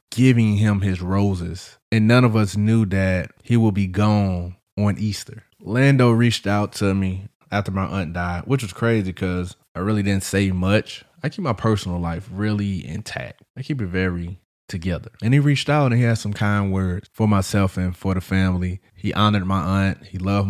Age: 20-39